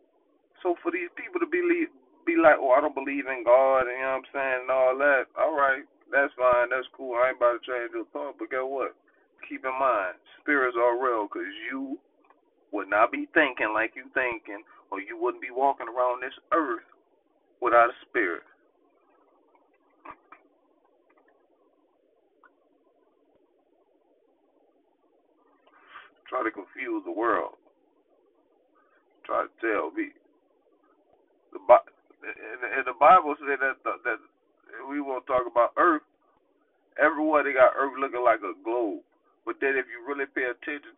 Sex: male